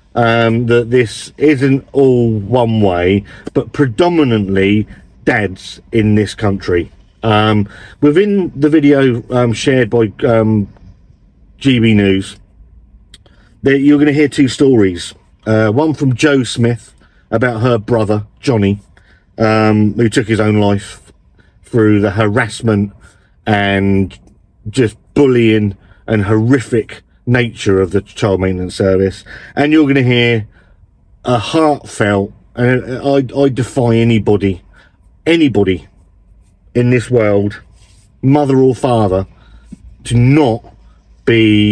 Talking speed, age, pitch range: 115 wpm, 40-59, 95-125 Hz